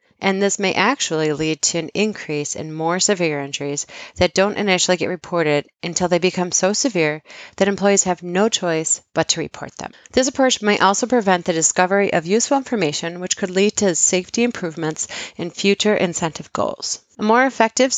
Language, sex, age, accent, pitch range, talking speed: English, female, 30-49, American, 165-205 Hz, 180 wpm